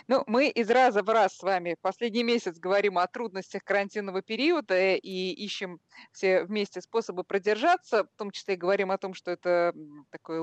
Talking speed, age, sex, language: 180 wpm, 20-39, female, Russian